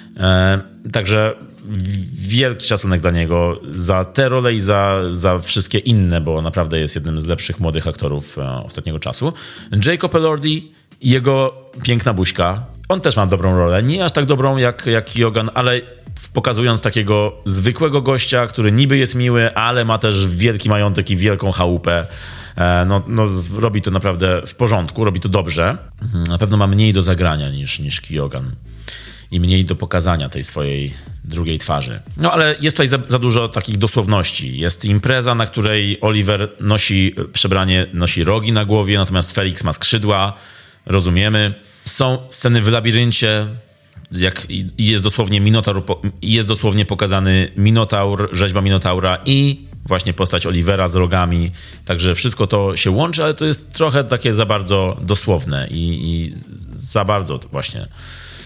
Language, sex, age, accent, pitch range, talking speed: Polish, male, 30-49, native, 90-115 Hz, 155 wpm